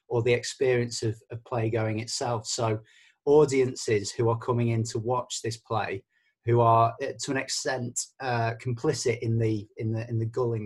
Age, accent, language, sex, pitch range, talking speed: 30-49, British, English, male, 110-125 Hz, 180 wpm